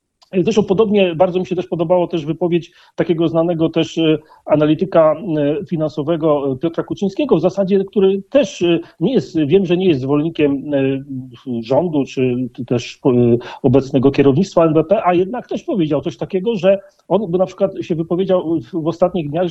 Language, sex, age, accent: Polish, male, 40-59, native